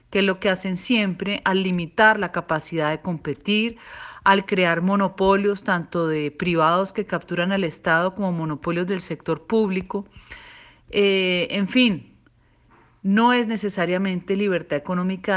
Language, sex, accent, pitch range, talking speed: Spanish, female, Colombian, 170-220 Hz, 135 wpm